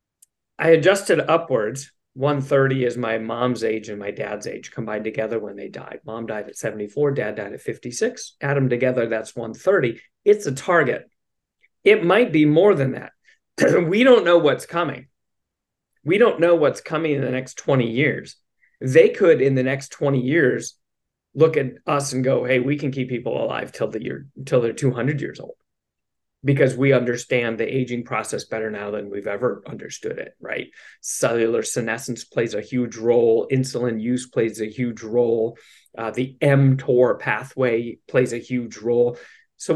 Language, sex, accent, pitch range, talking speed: English, male, American, 115-145 Hz, 180 wpm